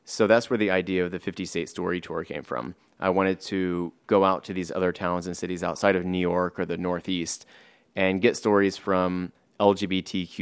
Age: 30-49